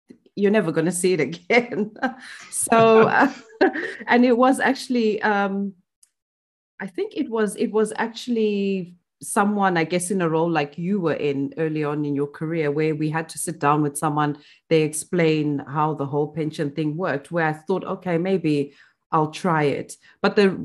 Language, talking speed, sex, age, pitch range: English, 180 wpm, female, 30-49, 145-190 Hz